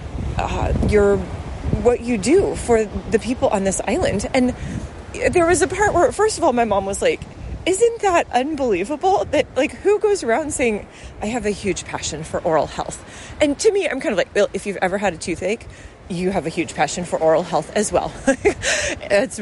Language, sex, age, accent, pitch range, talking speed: English, female, 30-49, American, 205-290 Hz, 205 wpm